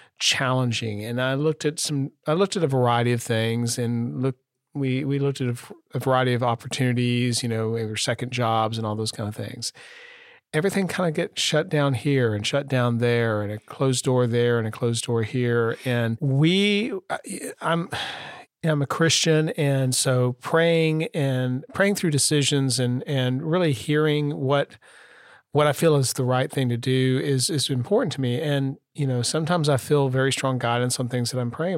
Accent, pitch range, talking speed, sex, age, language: American, 120-145 Hz, 195 wpm, male, 40-59, English